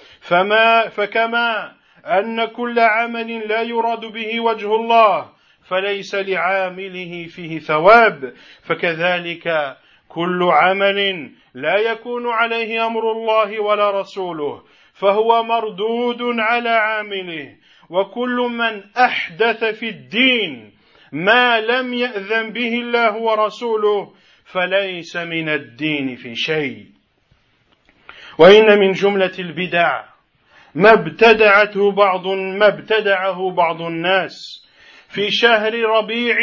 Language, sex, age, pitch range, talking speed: French, male, 50-69, 190-230 Hz, 90 wpm